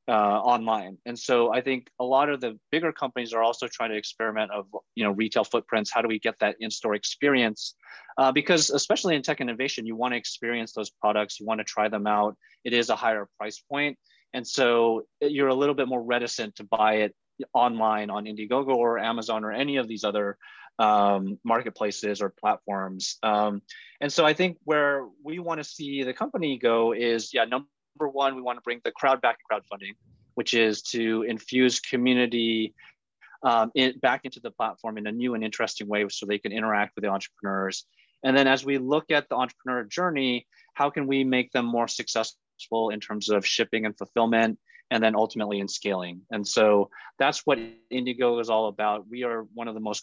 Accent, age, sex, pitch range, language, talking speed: American, 30-49, male, 110-130 Hz, English, 200 wpm